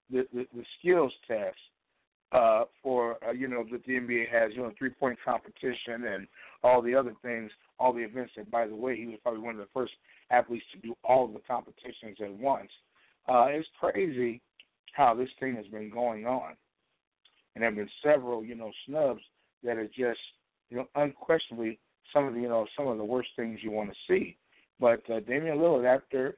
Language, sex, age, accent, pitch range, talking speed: English, male, 60-79, American, 115-140 Hz, 200 wpm